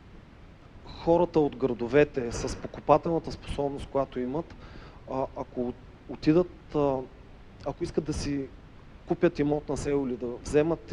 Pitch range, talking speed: 125-150 Hz, 115 wpm